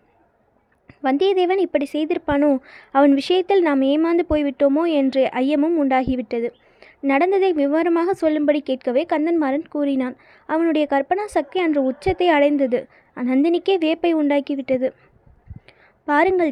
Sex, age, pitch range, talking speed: female, 20-39, 275-335 Hz, 100 wpm